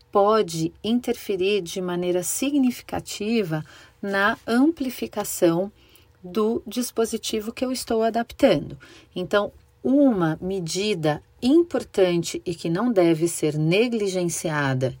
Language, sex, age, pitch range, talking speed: Portuguese, female, 40-59, 155-210 Hz, 90 wpm